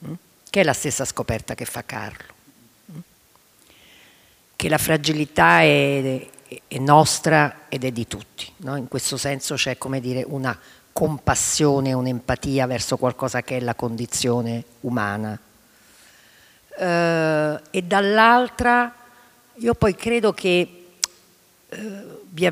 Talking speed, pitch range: 110 wpm, 125-180 Hz